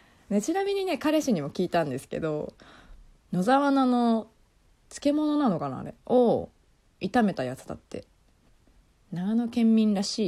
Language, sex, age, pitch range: Japanese, female, 20-39, 155-250 Hz